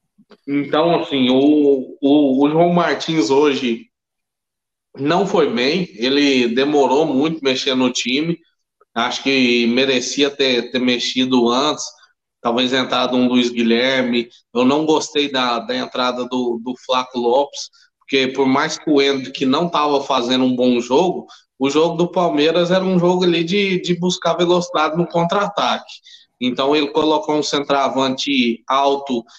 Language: Portuguese